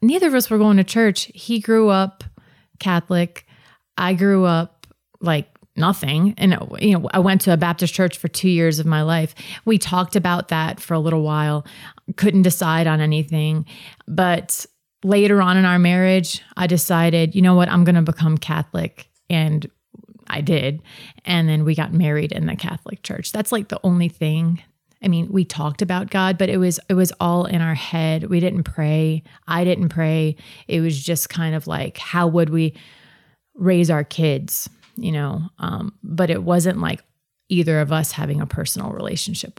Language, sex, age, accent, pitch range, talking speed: English, female, 30-49, American, 155-185 Hz, 185 wpm